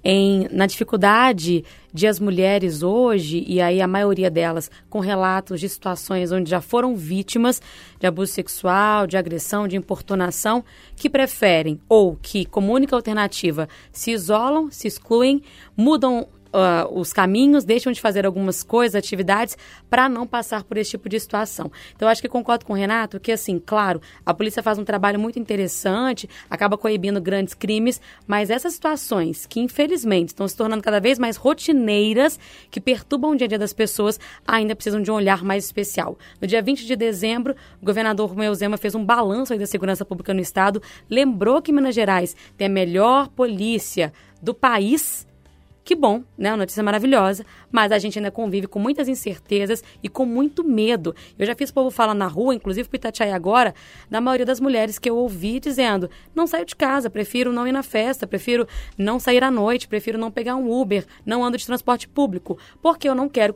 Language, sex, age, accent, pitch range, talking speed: Portuguese, female, 20-39, Brazilian, 195-245 Hz, 185 wpm